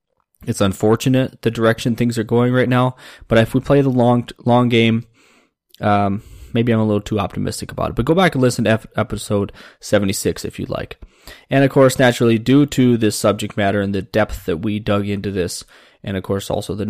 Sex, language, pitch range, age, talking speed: male, English, 100-130 Hz, 20-39, 215 wpm